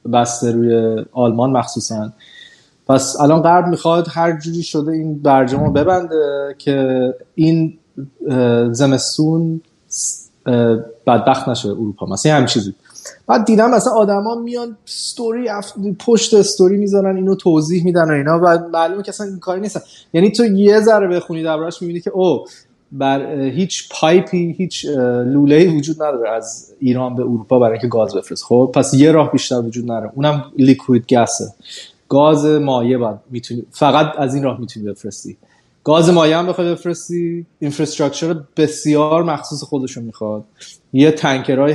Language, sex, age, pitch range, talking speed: Persian, male, 30-49, 130-170 Hz, 145 wpm